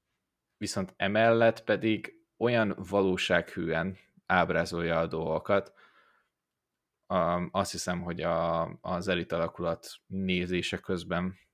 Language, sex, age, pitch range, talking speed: Hungarian, male, 20-39, 90-100 Hz, 85 wpm